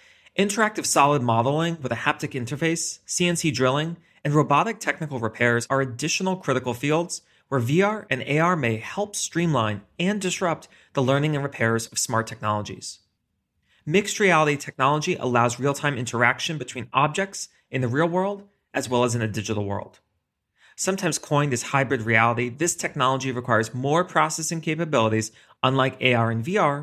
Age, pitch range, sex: 30-49, 120-170 Hz, male